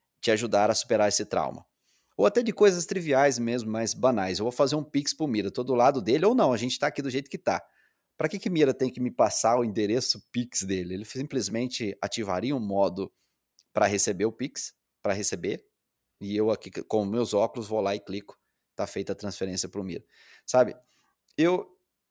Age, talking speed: 30-49, 205 wpm